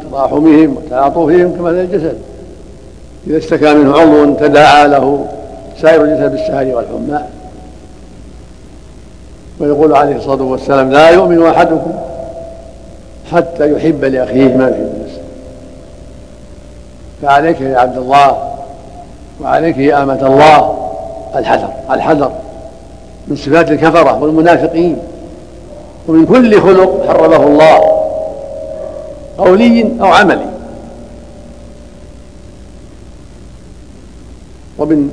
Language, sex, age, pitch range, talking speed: Arabic, male, 60-79, 135-170 Hz, 85 wpm